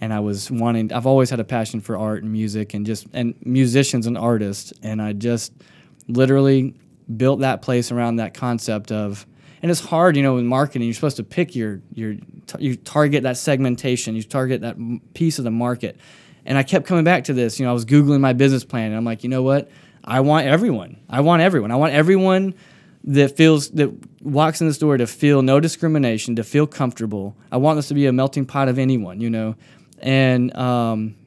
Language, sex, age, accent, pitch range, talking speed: English, male, 10-29, American, 115-145 Hz, 215 wpm